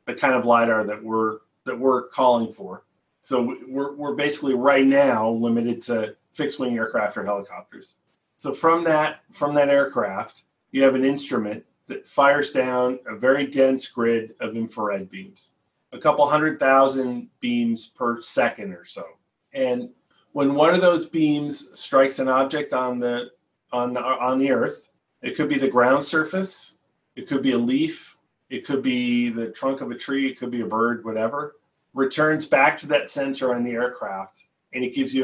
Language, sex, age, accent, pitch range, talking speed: English, male, 40-59, American, 120-145 Hz, 180 wpm